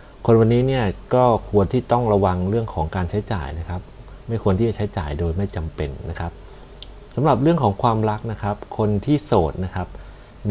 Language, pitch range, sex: Thai, 90-110 Hz, male